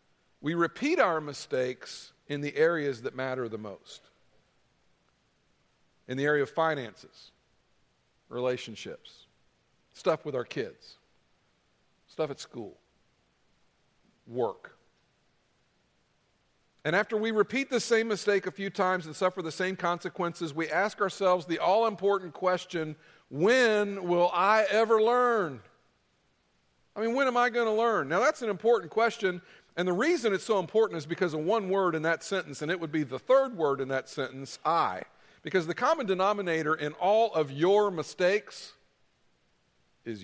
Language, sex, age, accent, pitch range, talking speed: English, male, 50-69, American, 140-190 Hz, 145 wpm